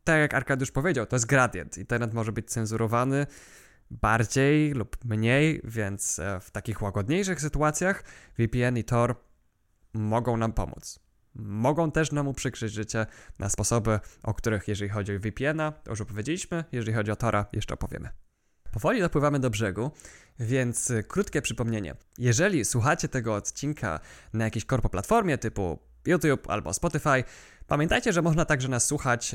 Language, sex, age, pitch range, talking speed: Polish, male, 20-39, 110-140 Hz, 145 wpm